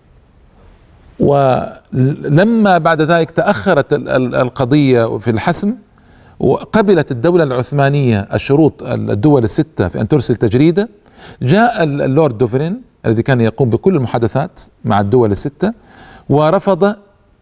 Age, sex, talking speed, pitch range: 40-59, male, 100 wpm, 125-165 Hz